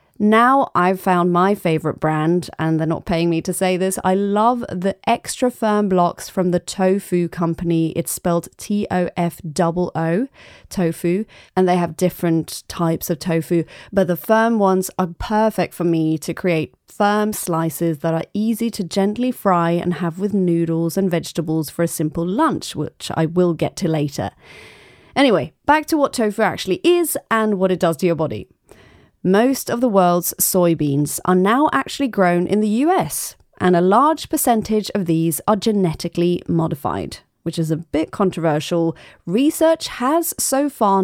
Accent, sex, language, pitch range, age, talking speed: British, female, English, 165-215 Hz, 30-49, 165 wpm